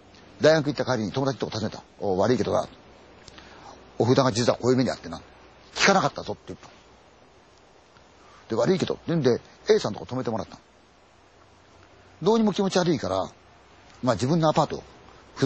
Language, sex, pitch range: Chinese, male, 110-160 Hz